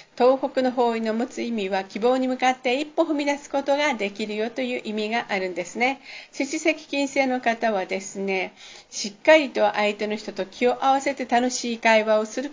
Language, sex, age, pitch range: Japanese, female, 50-69, 210-285 Hz